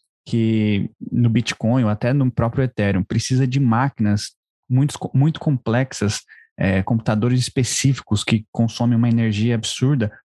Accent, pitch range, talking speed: Brazilian, 105-130 Hz, 130 wpm